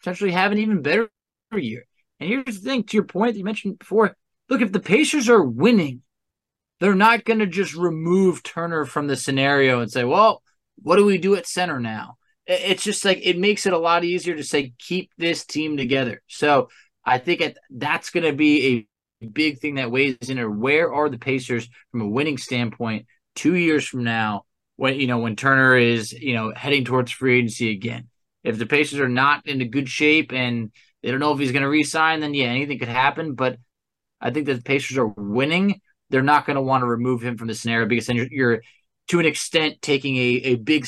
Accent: American